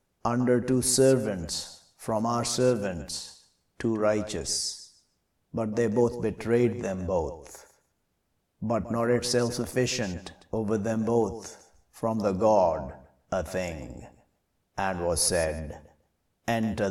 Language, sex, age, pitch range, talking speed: English, male, 50-69, 90-115 Hz, 105 wpm